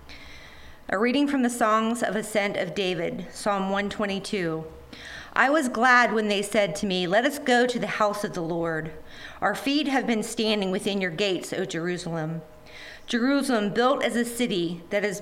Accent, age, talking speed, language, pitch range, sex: American, 40-59, 180 wpm, English, 185-245 Hz, female